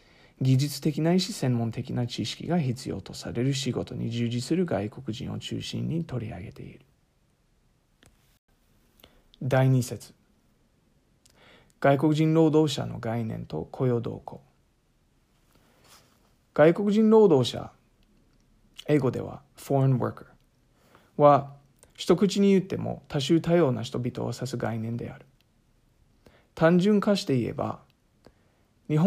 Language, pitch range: English, 120-150 Hz